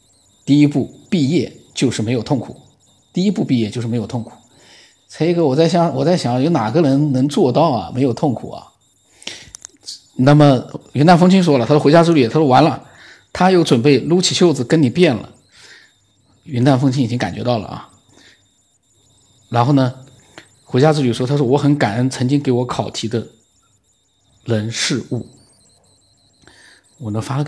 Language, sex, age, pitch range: Chinese, male, 50-69, 110-150 Hz